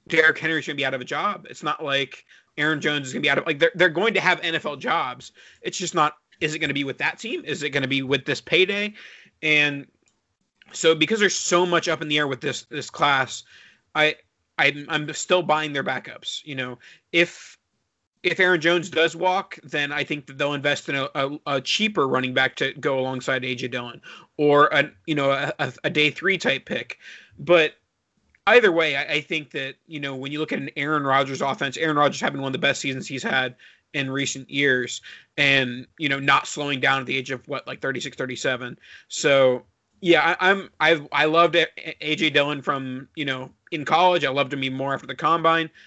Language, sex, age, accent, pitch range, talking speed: English, male, 30-49, American, 140-160 Hz, 220 wpm